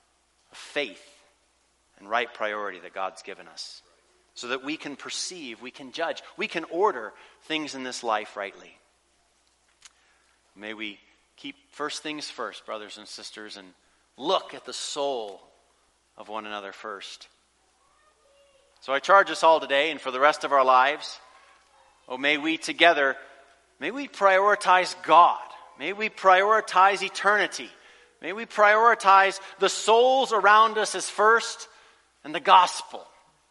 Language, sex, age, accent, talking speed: English, male, 40-59, American, 145 wpm